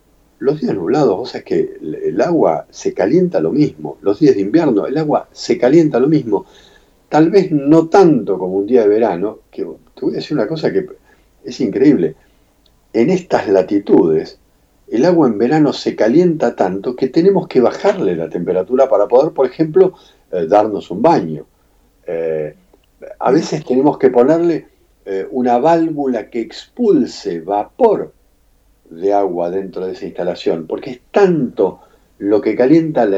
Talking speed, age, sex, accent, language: 165 wpm, 50-69, male, Argentinian, Spanish